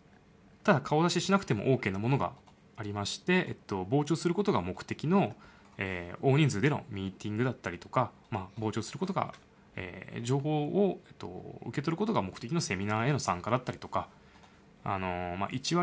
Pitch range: 100-160 Hz